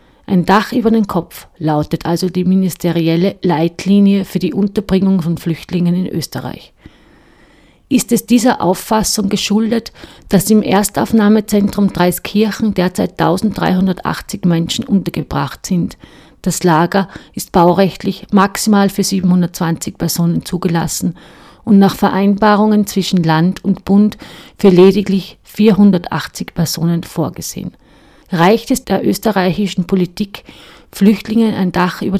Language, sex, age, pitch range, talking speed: German, female, 50-69, 180-210 Hz, 115 wpm